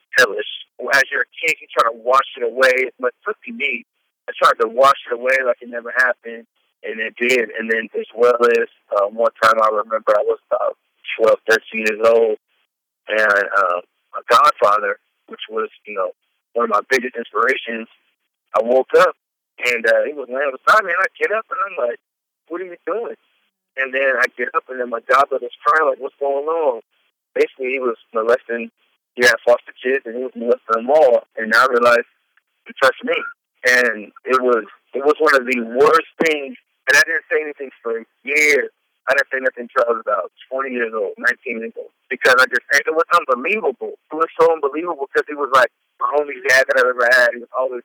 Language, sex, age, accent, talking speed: English, male, 40-59, American, 215 wpm